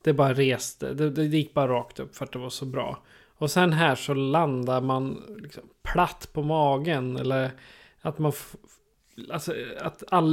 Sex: male